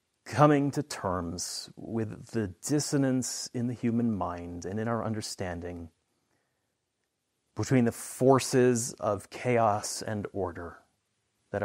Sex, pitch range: male, 105-135 Hz